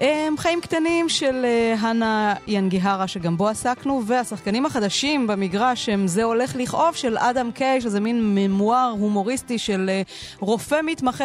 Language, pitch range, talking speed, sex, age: Hebrew, 180-245 Hz, 135 wpm, female, 30-49